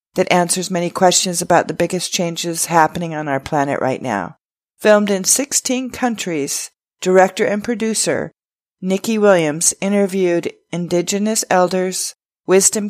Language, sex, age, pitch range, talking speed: English, female, 40-59, 170-205 Hz, 125 wpm